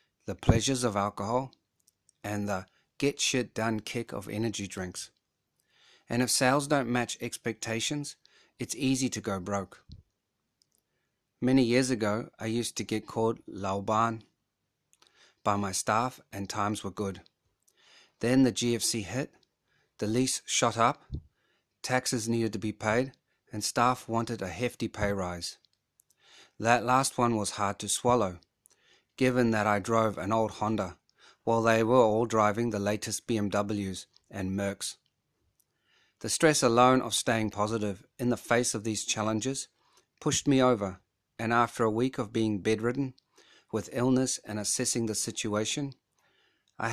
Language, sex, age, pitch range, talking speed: English, male, 30-49, 105-125 Hz, 145 wpm